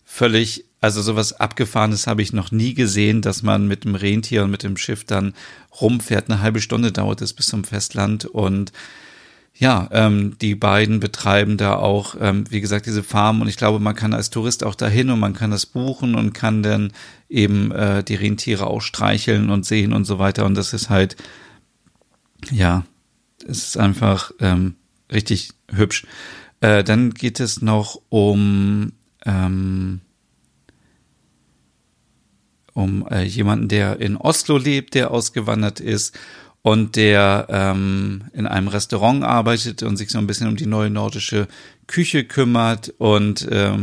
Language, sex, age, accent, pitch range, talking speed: German, male, 40-59, German, 100-115 Hz, 155 wpm